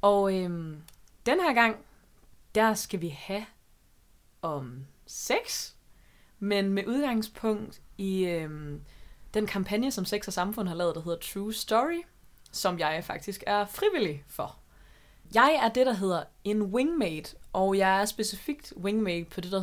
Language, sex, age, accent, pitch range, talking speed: Danish, female, 20-39, native, 170-215 Hz, 145 wpm